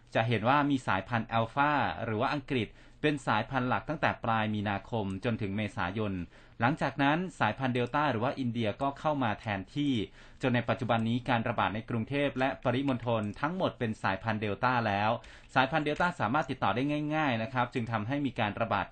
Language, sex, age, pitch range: Thai, male, 30-49, 115-135 Hz